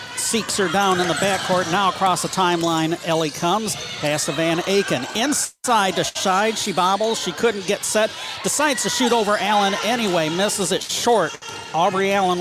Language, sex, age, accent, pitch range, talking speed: English, male, 50-69, American, 185-245 Hz, 175 wpm